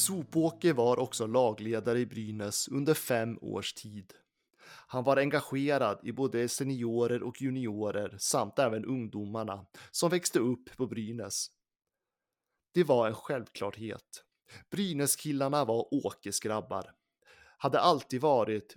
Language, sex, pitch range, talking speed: Swedish, male, 110-140 Hz, 120 wpm